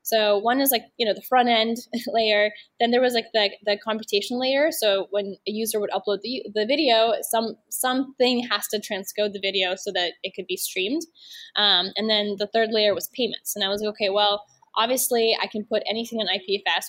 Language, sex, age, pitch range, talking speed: English, female, 10-29, 195-230 Hz, 215 wpm